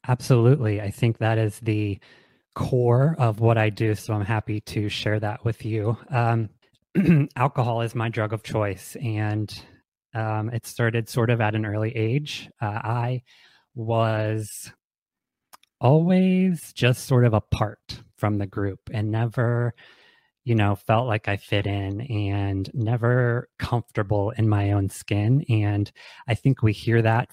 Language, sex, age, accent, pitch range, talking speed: English, male, 20-39, American, 105-120 Hz, 150 wpm